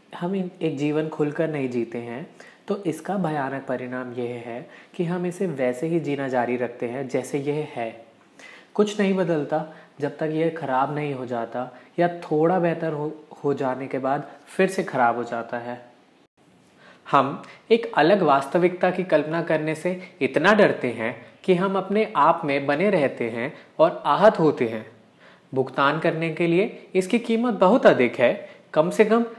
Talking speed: 170 wpm